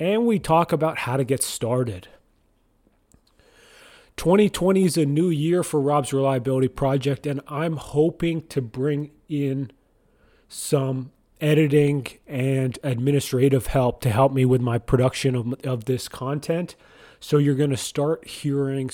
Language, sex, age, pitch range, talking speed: English, male, 30-49, 120-145 Hz, 135 wpm